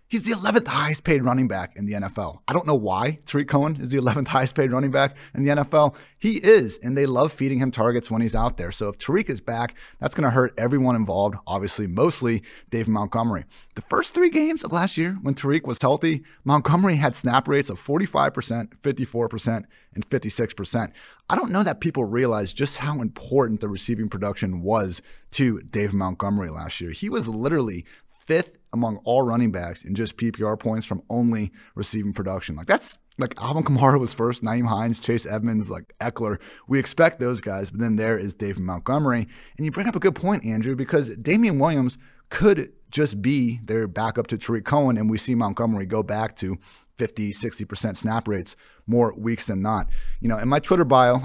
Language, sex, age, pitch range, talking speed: English, male, 30-49, 110-140 Hz, 195 wpm